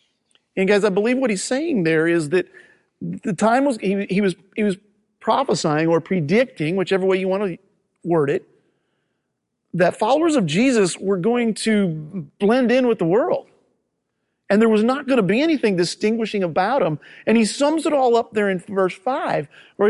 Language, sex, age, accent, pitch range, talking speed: English, male, 40-59, American, 165-215 Hz, 185 wpm